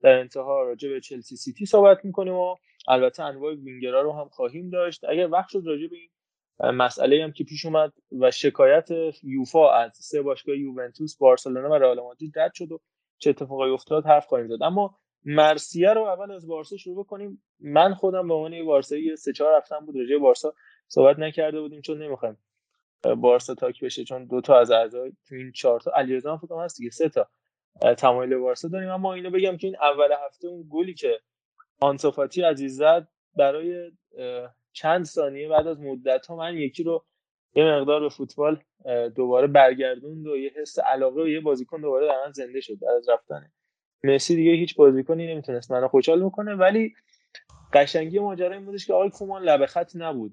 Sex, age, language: male, 20-39, Persian